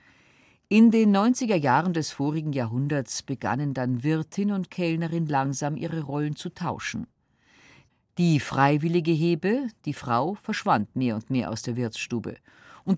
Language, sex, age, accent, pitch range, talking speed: German, female, 50-69, German, 130-180 Hz, 140 wpm